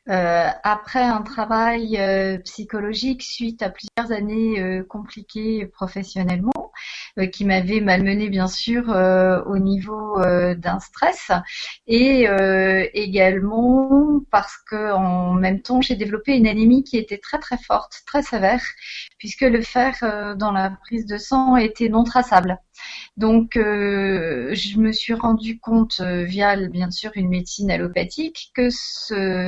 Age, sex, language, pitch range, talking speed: 30-49, female, French, 185-230 Hz, 145 wpm